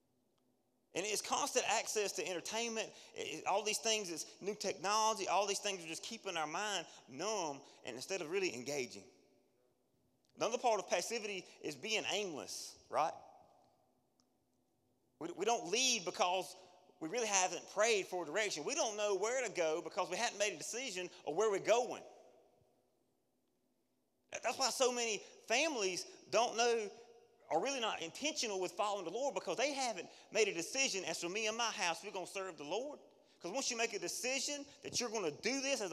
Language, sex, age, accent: English, male, 30-49, American